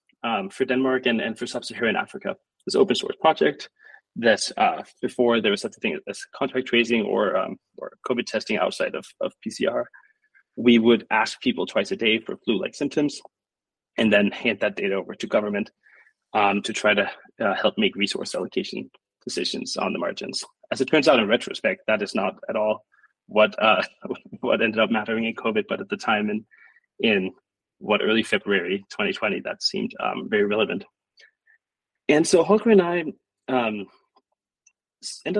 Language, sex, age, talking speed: English, male, 20-39, 175 wpm